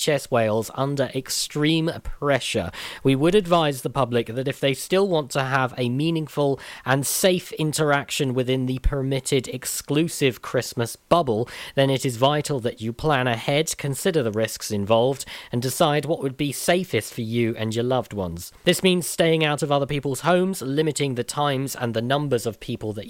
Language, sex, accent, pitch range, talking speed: English, male, British, 120-150 Hz, 175 wpm